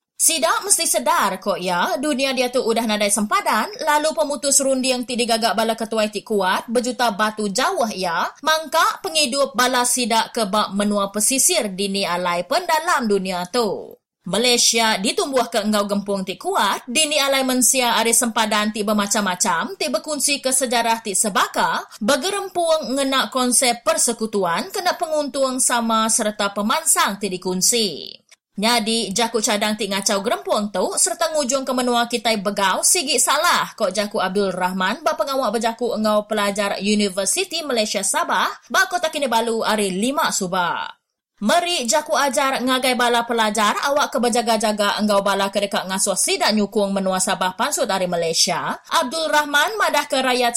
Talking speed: 145 wpm